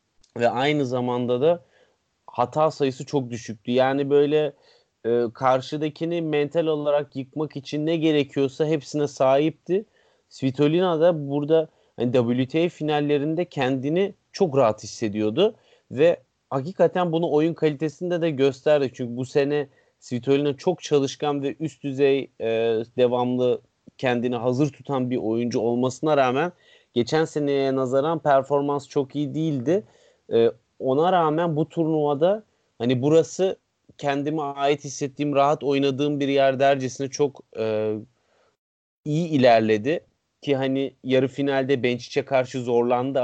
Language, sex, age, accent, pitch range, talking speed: Turkish, male, 30-49, native, 125-155 Hz, 115 wpm